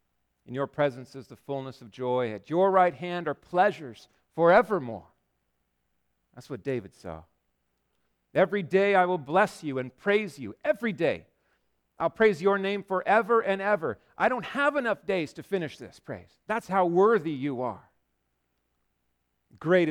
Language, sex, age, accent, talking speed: English, male, 50-69, American, 155 wpm